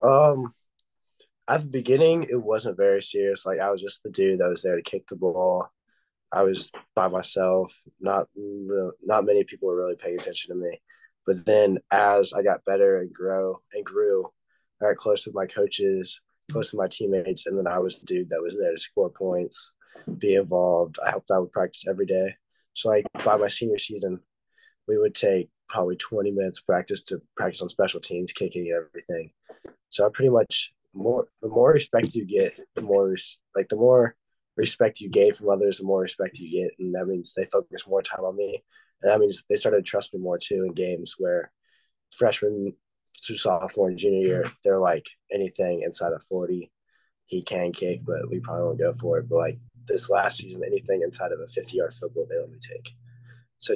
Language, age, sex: English, 20-39, male